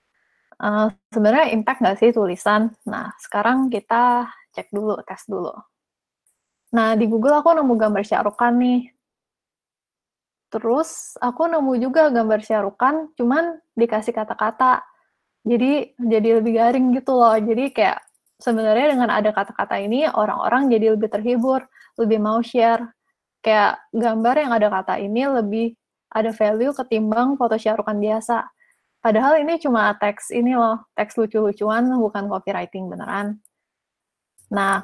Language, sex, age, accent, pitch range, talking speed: Indonesian, female, 20-39, native, 210-245 Hz, 130 wpm